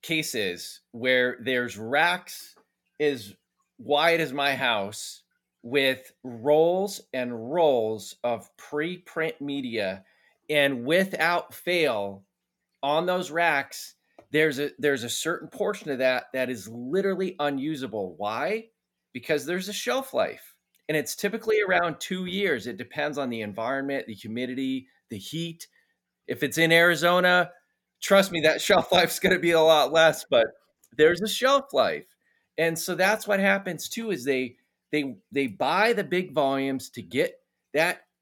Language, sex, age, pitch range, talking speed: English, male, 30-49, 130-190 Hz, 145 wpm